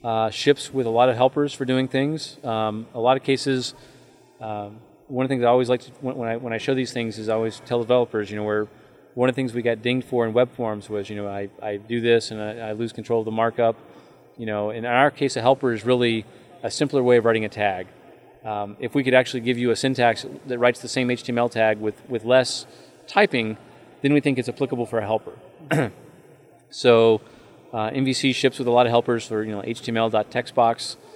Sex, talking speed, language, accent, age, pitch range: male, 235 wpm, English, American, 30-49, 110-125 Hz